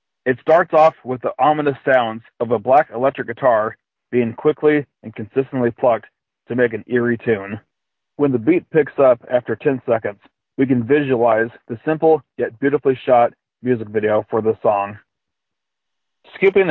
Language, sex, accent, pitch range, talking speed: English, male, American, 115-140 Hz, 160 wpm